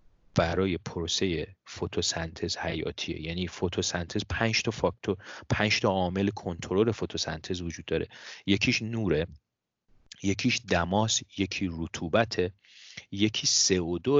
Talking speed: 100 wpm